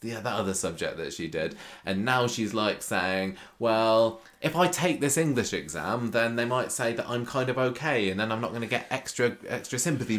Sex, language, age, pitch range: male, English, 20-39, 100-125 Hz